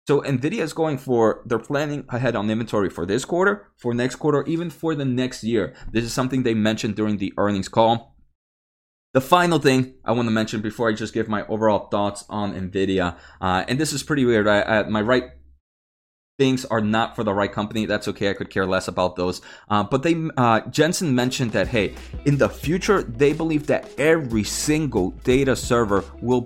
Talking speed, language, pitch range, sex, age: 205 wpm, English, 100-135 Hz, male, 20-39